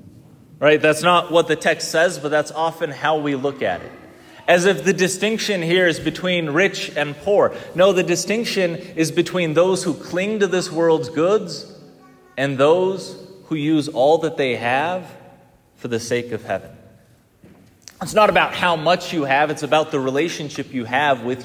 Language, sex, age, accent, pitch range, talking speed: English, male, 30-49, American, 140-180 Hz, 180 wpm